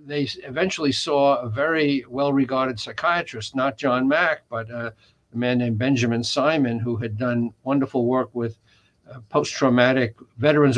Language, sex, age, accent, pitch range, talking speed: English, male, 60-79, American, 120-145 Hz, 145 wpm